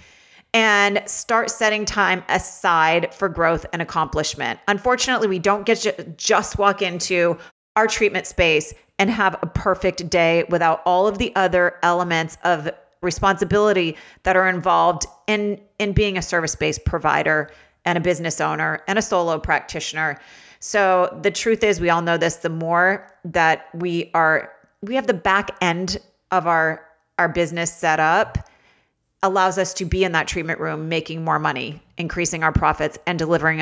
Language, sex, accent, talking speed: English, female, American, 160 wpm